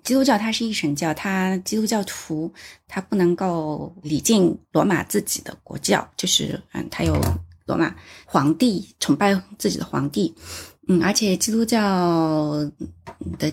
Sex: female